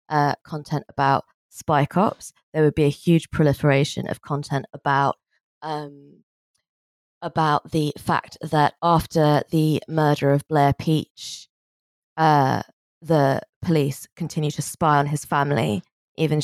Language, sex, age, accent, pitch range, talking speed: English, female, 20-39, British, 155-225 Hz, 130 wpm